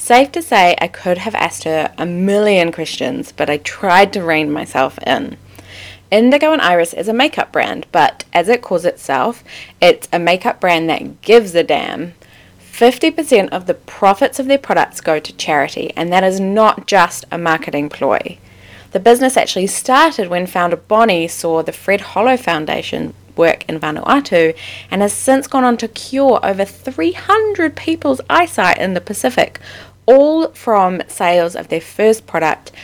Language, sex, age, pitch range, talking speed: English, female, 20-39, 160-235 Hz, 170 wpm